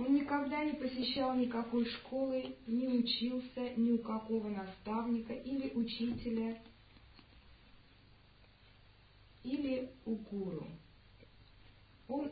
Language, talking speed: Russian, 90 wpm